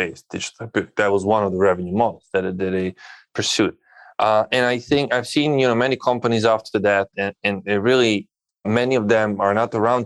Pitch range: 100-120 Hz